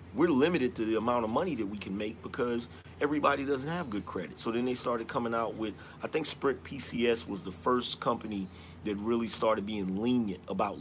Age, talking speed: 40-59, 210 wpm